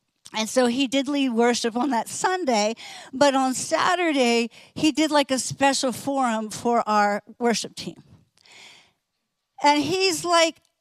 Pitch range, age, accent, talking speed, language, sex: 245-310 Hz, 50-69, American, 140 wpm, English, female